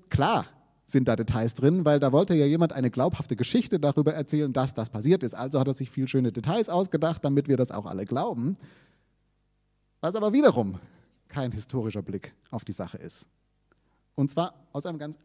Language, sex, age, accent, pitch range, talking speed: German, male, 30-49, German, 125-160 Hz, 190 wpm